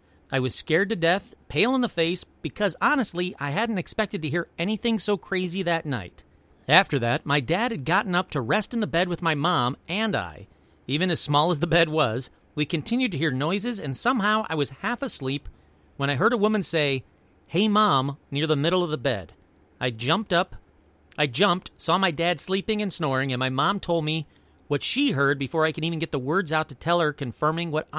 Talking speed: 220 wpm